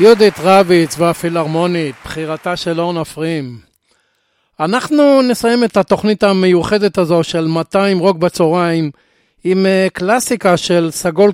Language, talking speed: Hebrew, 110 wpm